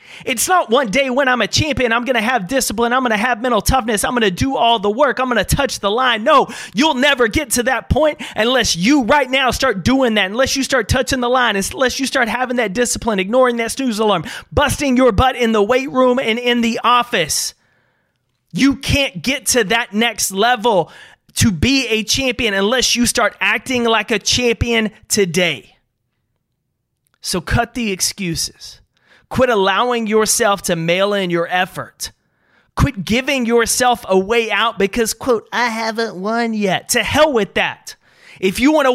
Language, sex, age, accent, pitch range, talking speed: English, male, 30-49, American, 200-255 Hz, 190 wpm